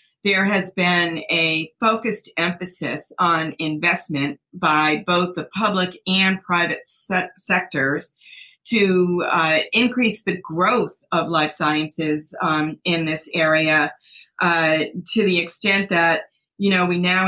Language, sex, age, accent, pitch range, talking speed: English, female, 40-59, American, 165-195 Hz, 125 wpm